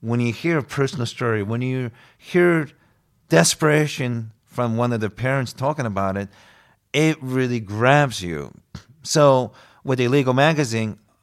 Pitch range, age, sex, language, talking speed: 110-135 Hz, 40-59, male, English, 140 wpm